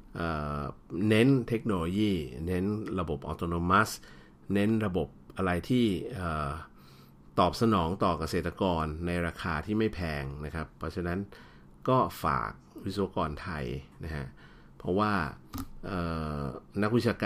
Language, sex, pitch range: Thai, male, 75-100 Hz